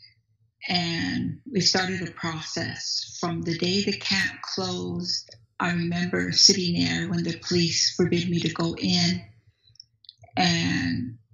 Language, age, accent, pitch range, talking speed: English, 50-69, American, 110-180 Hz, 125 wpm